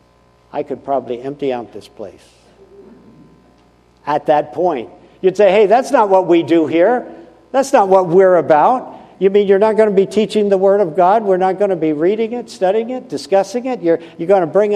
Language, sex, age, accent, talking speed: English, male, 60-79, American, 210 wpm